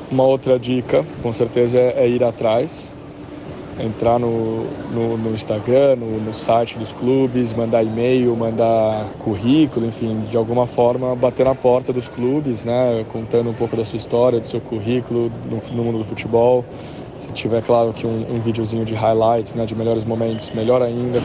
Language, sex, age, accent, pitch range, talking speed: Portuguese, male, 20-39, Brazilian, 115-125 Hz, 175 wpm